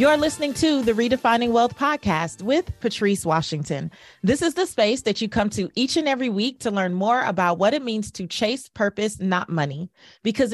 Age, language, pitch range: 30-49, English, 165-225 Hz